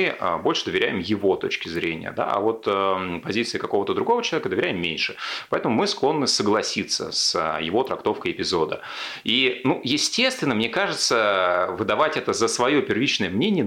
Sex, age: male, 30-49